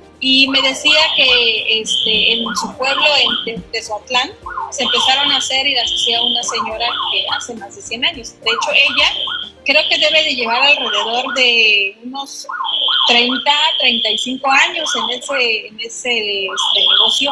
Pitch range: 235-285 Hz